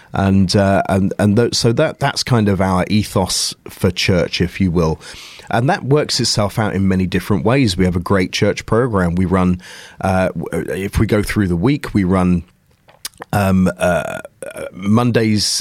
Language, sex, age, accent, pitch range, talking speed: English, male, 30-49, British, 90-105 Hz, 185 wpm